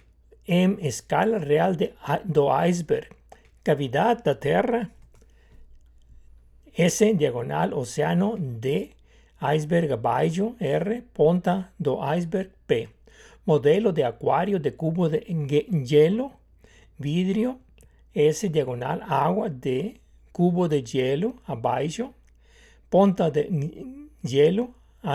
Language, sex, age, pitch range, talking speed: Portuguese, male, 60-79, 140-215 Hz, 95 wpm